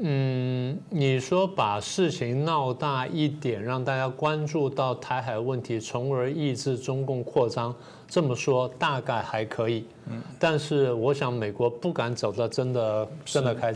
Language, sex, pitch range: Chinese, male, 115-145 Hz